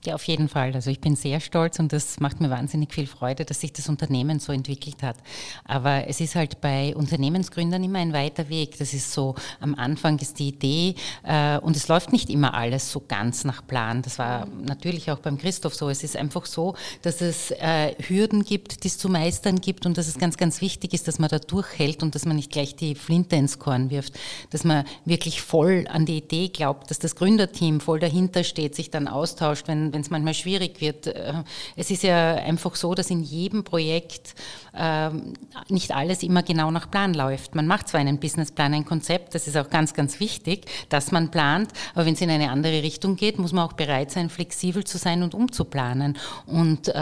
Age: 30-49